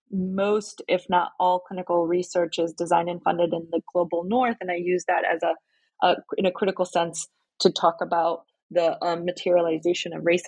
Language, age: English, 20-39